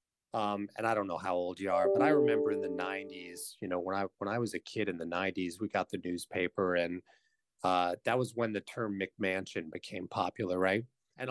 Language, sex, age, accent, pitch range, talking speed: English, male, 40-59, American, 100-140 Hz, 230 wpm